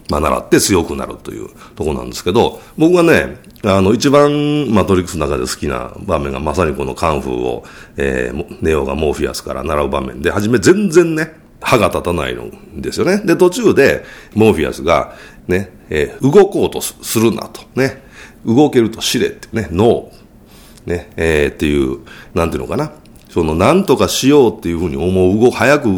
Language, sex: Japanese, male